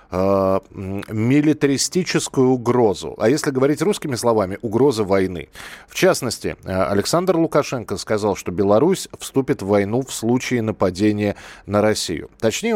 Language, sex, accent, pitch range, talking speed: Russian, male, native, 110-160 Hz, 120 wpm